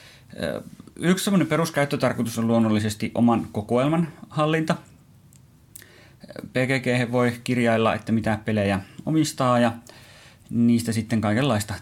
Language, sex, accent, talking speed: Finnish, male, native, 90 wpm